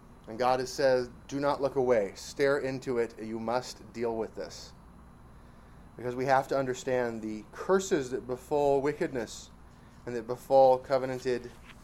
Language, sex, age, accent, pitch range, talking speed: English, male, 30-49, American, 115-130 Hz, 150 wpm